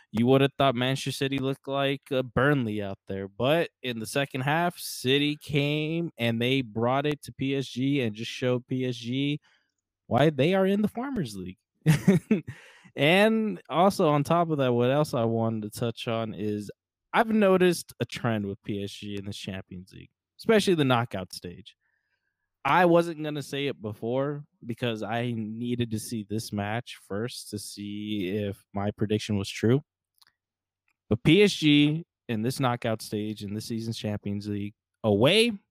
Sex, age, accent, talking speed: male, 20-39, American, 165 wpm